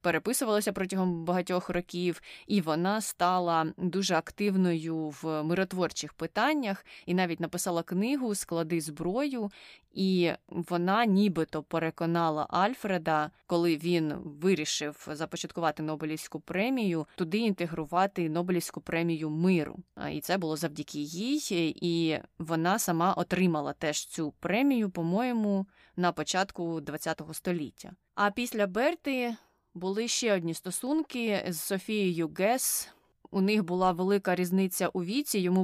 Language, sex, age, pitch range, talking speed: Ukrainian, female, 20-39, 165-195 Hz, 120 wpm